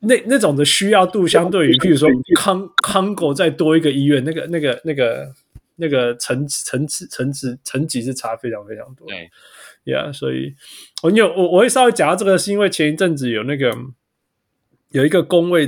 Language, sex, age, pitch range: Chinese, male, 20-39, 125-170 Hz